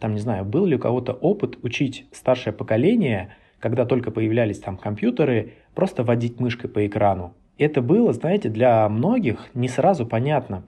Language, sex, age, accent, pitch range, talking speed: Russian, male, 20-39, native, 105-130 Hz, 165 wpm